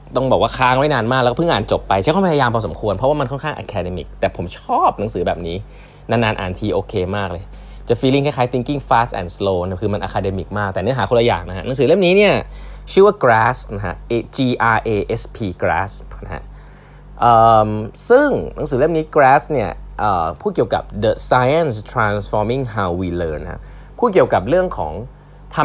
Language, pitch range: Thai, 100-135 Hz